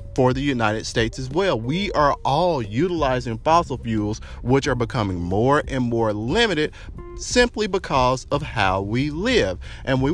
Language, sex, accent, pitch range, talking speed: English, male, American, 105-150 Hz, 160 wpm